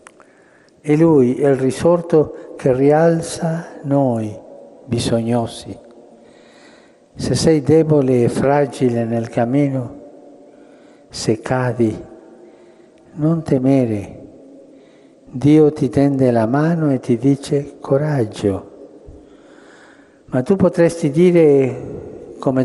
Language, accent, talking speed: Italian, native, 90 wpm